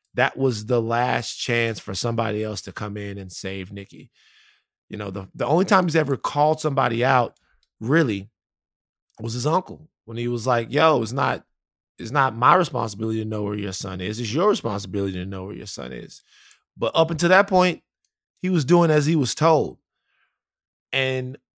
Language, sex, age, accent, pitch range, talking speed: English, male, 20-39, American, 115-165 Hz, 190 wpm